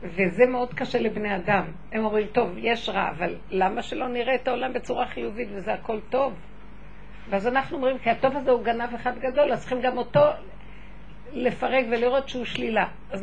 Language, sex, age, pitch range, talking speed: Hebrew, female, 50-69, 210-260 Hz, 180 wpm